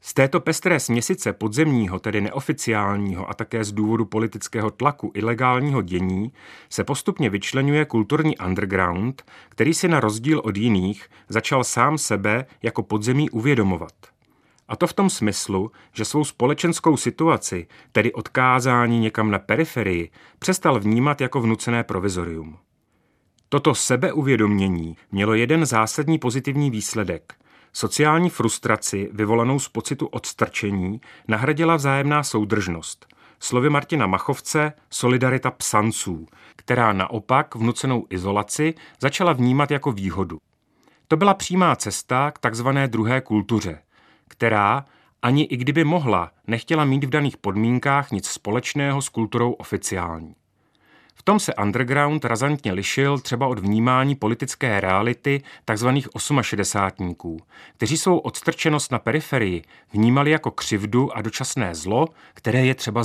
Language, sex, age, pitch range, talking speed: Czech, male, 30-49, 105-145 Hz, 125 wpm